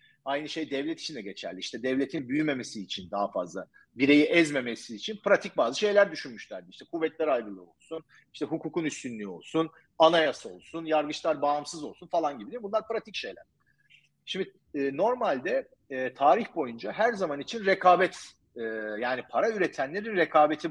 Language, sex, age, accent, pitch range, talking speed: Turkish, male, 40-59, native, 135-210 Hz, 155 wpm